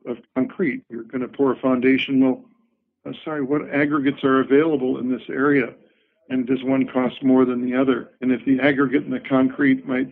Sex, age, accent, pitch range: male, 60-79, American, 130-145 Hz